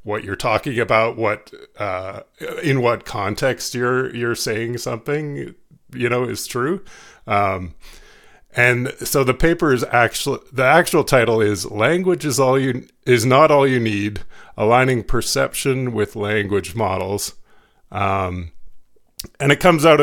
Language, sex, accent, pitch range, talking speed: English, male, American, 105-140 Hz, 140 wpm